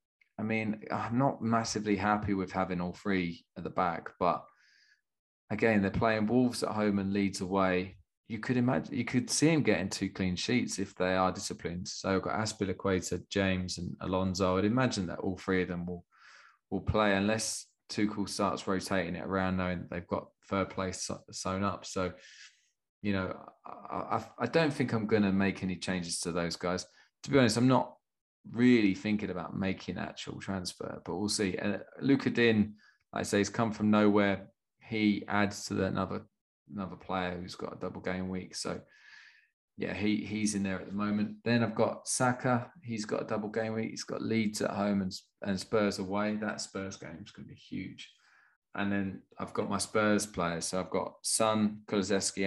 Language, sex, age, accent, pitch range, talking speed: English, male, 20-39, British, 95-110 Hz, 195 wpm